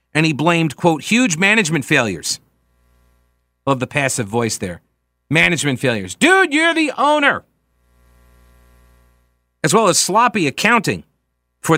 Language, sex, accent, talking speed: English, male, American, 120 wpm